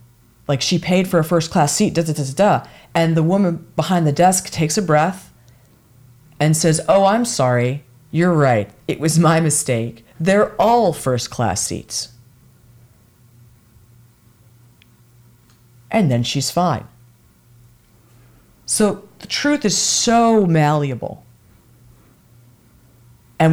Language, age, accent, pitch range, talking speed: English, 40-59, American, 120-180 Hz, 115 wpm